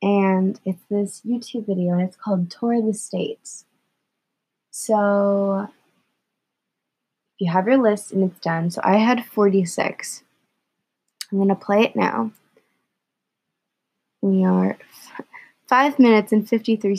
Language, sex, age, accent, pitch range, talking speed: English, female, 20-39, American, 185-220 Hz, 130 wpm